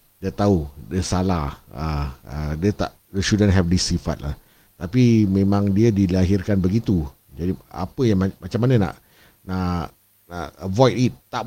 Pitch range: 90-115 Hz